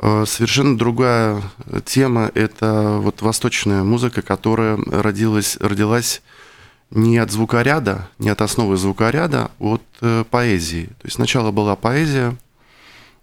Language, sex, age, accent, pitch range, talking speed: Russian, male, 20-39, native, 105-125 Hz, 110 wpm